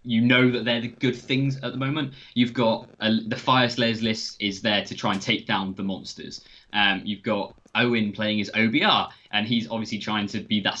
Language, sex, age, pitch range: English, male, 20-39, 105-125 Hz